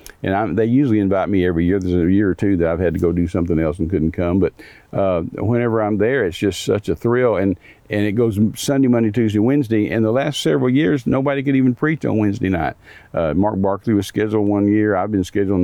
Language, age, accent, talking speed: English, 50-69, American, 245 wpm